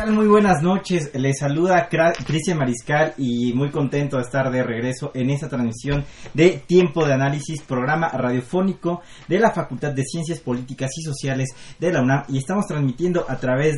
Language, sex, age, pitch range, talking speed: Spanish, male, 30-49, 125-165 Hz, 170 wpm